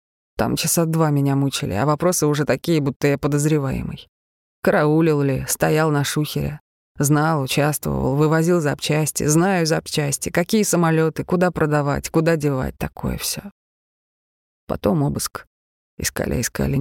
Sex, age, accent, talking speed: female, 20-39, native, 125 wpm